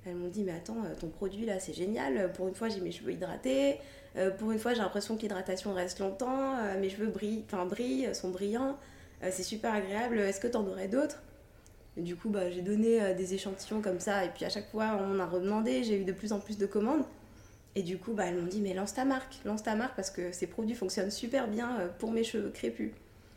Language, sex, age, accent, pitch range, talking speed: French, female, 20-39, French, 180-215 Hz, 230 wpm